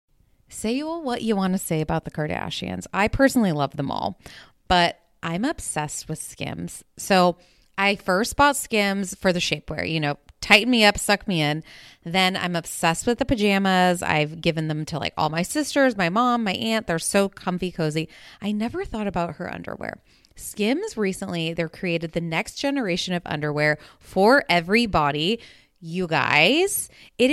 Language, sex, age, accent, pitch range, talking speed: English, female, 20-39, American, 165-245 Hz, 175 wpm